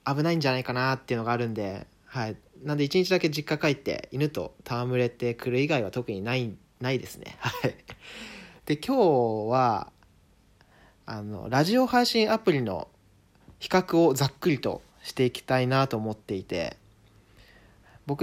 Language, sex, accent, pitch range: Japanese, male, native, 115-185 Hz